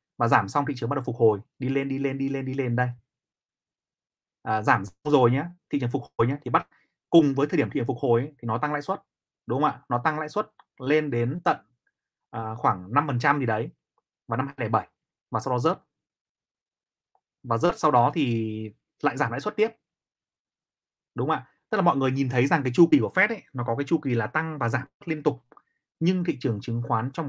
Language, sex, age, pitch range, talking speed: Vietnamese, male, 20-39, 120-150 Hz, 240 wpm